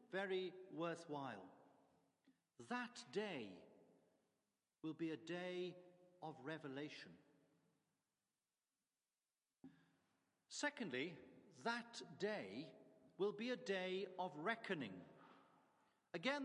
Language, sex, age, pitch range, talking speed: English, male, 50-69, 185-230 Hz, 75 wpm